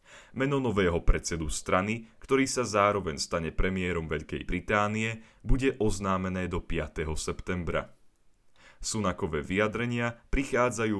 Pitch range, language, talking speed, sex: 85-110 Hz, Slovak, 105 wpm, male